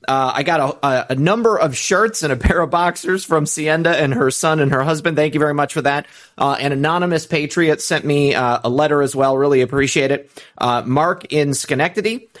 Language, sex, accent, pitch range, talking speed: English, male, American, 130-165 Hz, 220 wpm